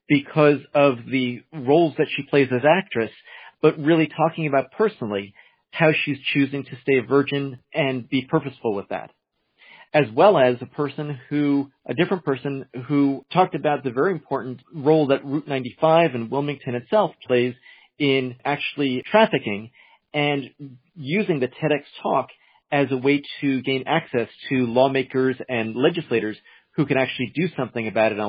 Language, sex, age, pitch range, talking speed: English, male, 40-59, 125-155 Hz, 160 wpm